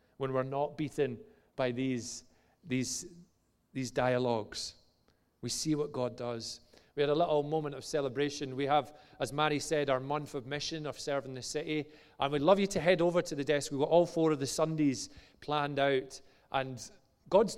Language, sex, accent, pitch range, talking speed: English, male, British, 130-160 Hz, 190 wpm